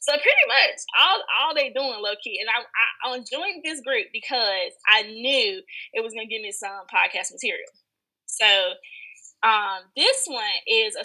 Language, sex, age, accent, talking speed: English, female, 20-39, American, 180 wpm